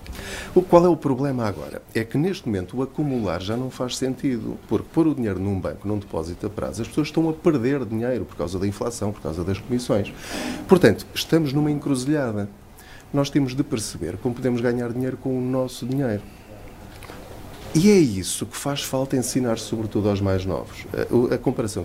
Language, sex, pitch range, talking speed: Portuguese, male, 100-135 Hz, 185 wpm